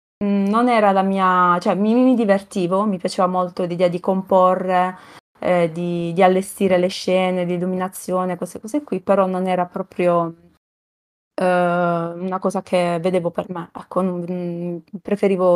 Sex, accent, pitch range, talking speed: female, native, 175-195 Hz, 150 wpm